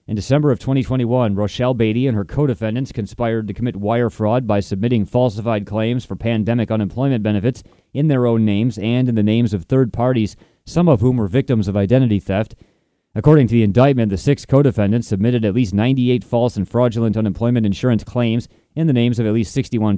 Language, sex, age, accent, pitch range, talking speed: English, male, 30-49, American, 105-125 Hz, 195 wpm